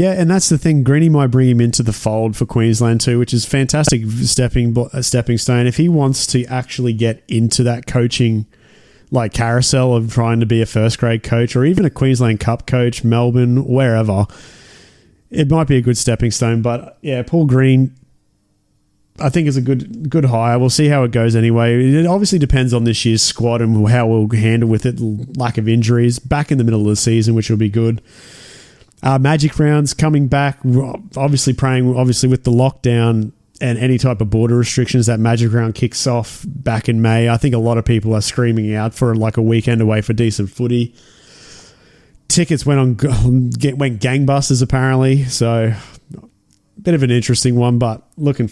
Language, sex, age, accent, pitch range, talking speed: English, male, 20-39, Australian, 115-135 Hz, 190 wpm